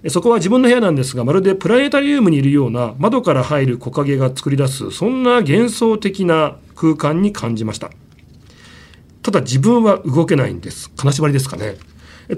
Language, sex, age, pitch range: Japanese, male, 40-59, 135-200 Hz